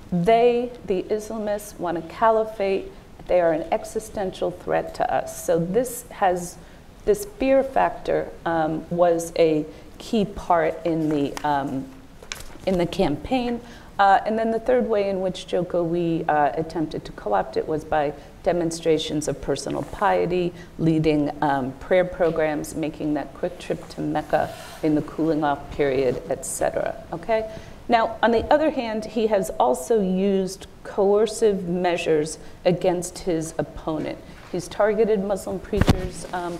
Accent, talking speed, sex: American, 140 wpm, female